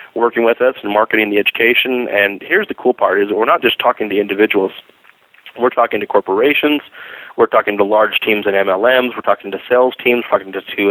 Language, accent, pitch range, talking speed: English, American, 100-120 Hz, 220 wpm